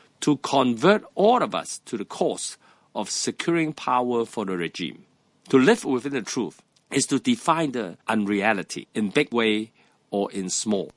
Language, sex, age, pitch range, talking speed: English, male, 50-69, 110-150 Hz, 165 wpm